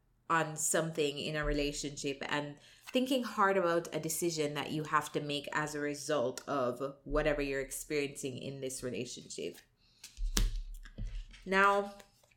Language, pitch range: English, 145-185 Hz